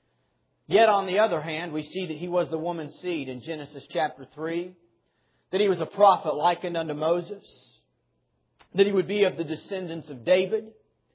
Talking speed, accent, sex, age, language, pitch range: 185 wpm, American, male, 40-59, English, 160-205 Hz